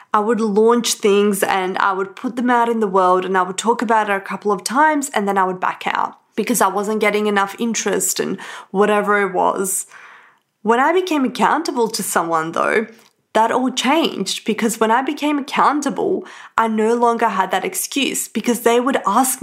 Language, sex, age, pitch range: English, female, 20-39, 195-245 Hz